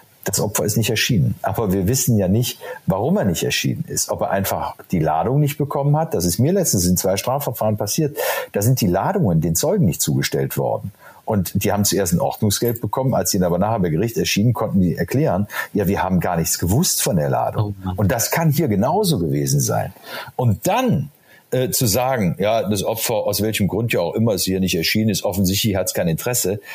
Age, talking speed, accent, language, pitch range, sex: 50-69, 220 wpm, German, German, 85-110 Hz, male